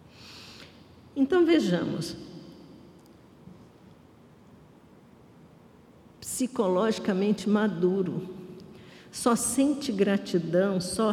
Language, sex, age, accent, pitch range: Portuguese, female, 60-79, Brazilian, 180-225 Hz